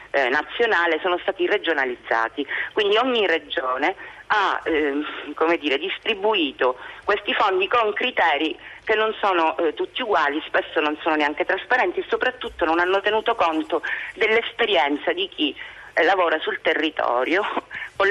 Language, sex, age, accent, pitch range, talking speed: Italian, female, 40-59, native, 135-225 Hz, 135 wpm